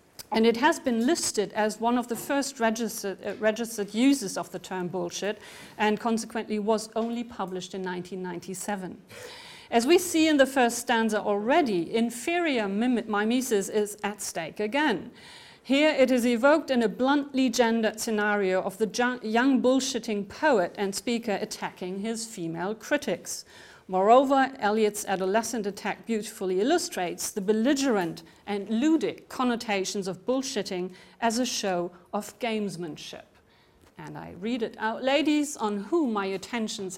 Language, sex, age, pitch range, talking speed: German, female, 50-69, 200-250 Hz, 140 wpm